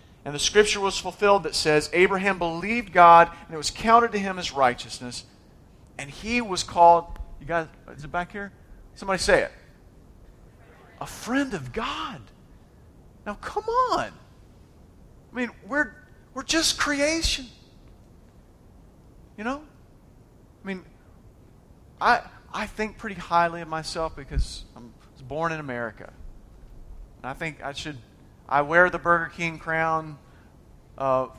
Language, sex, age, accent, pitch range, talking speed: English, male, 40-59, American, 160-240 Hz, 140 wpm